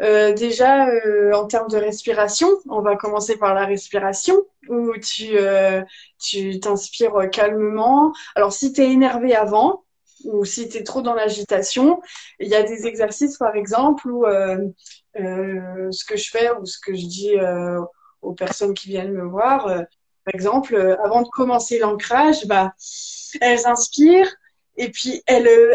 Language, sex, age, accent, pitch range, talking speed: French, female, 20-39, French, 205-270 Hz, 170 wpm